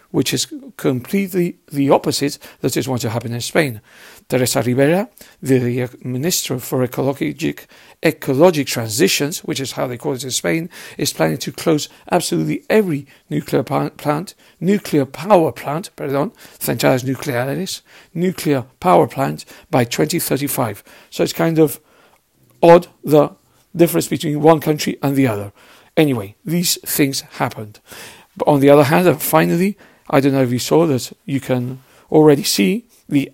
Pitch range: 130-170 Hz